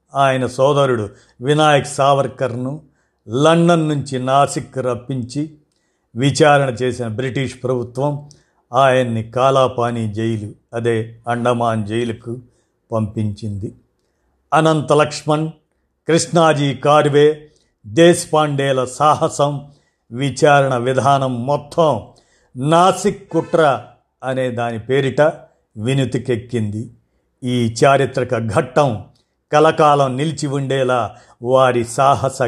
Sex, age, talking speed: male, 50-69, 80 wpm